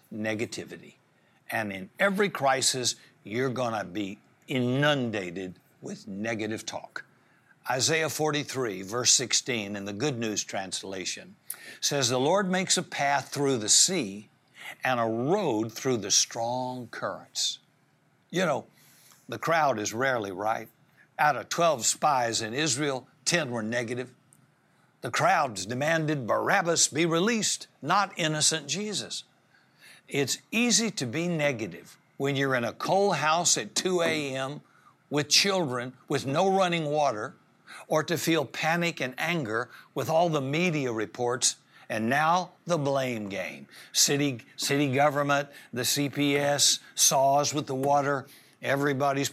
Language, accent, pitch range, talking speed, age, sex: English, American, 125-155 Hz, 135 wpm, 60-79, male